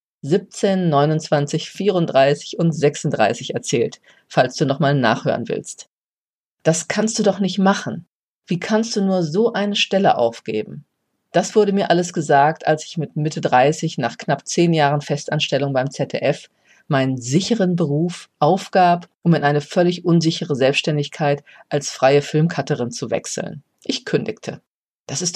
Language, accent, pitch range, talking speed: German, German, 145-185 Hz, 145 wpm